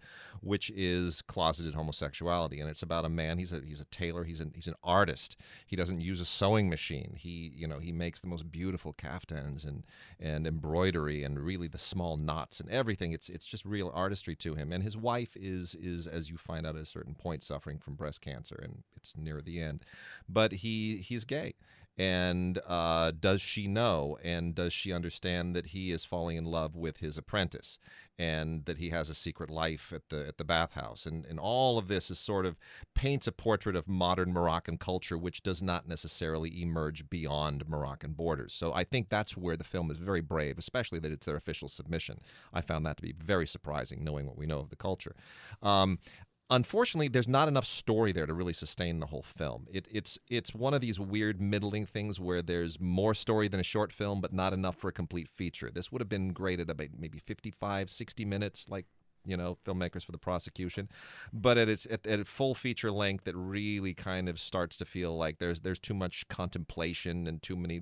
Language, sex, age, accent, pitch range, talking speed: English, male, 40-59, American, 80-100 Hz, 210 wpm